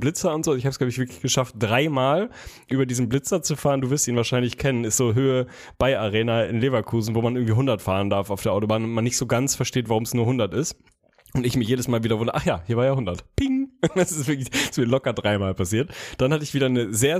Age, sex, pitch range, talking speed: 10-29, male, 110-140 Hz, 260 wpm